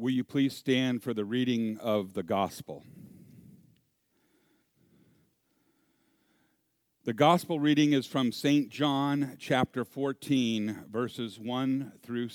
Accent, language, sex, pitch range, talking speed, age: American, English, male, 125-170 Hz, 105 wpm, 50-69